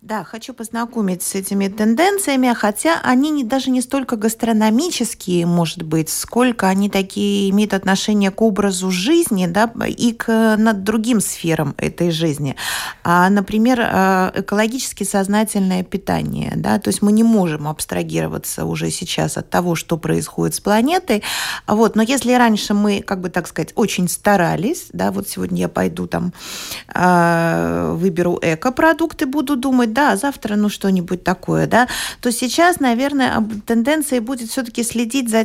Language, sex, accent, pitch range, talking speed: Russian, female, native, 180-245 Hz, 145 wpm